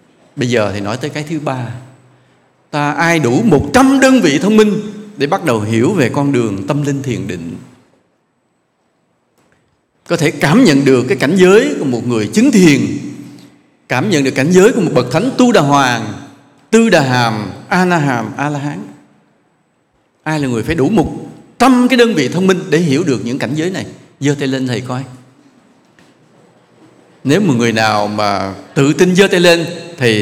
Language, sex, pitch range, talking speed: English, male, 115-160 Hz, 185 wpm